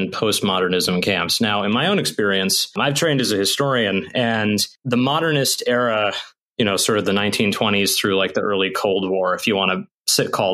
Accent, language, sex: American, English, male